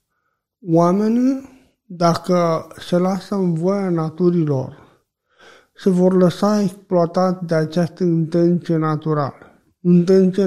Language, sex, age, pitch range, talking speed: Romanian, male, 50-69, 155-190 Hz, 95 wpm